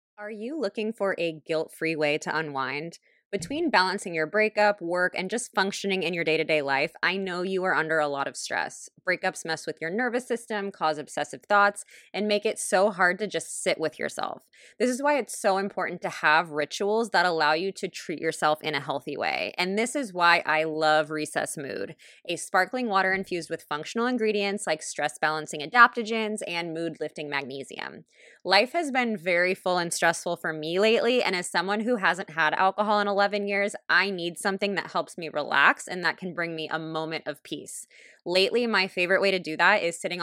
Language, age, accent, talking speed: English, 20-39, American, 200 wpm